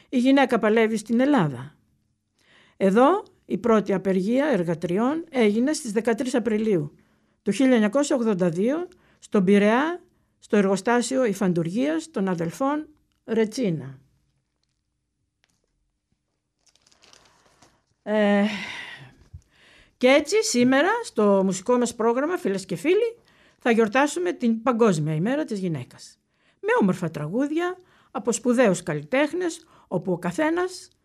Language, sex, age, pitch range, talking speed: English, female, 60-79, 195-280 Hz, 95 wpm